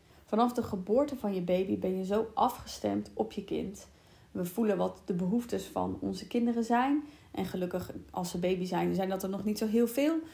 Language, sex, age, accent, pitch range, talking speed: Dutch, female, 30-49, Dutch, 185-230 Hz, 210 wpm